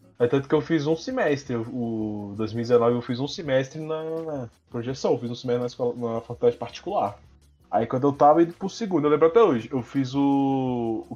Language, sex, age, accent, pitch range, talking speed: Portuguese, male, 20-39, Brazilian, 120-155 Hz, 210 wpm